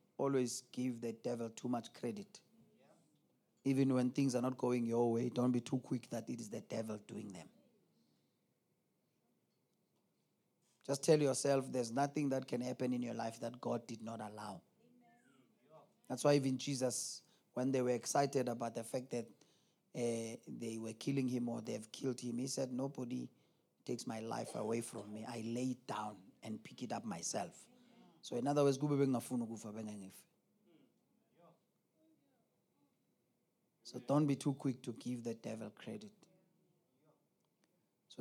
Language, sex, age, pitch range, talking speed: English, male, 30-49, 115-140 Hz, 150 wpm